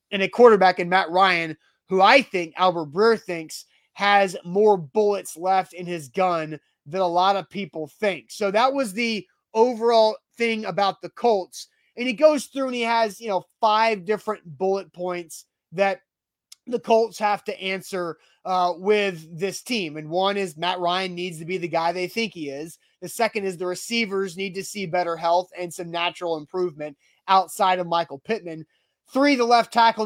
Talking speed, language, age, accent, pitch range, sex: 185 wpm, English, 30-49, American, 175-215 Hz, male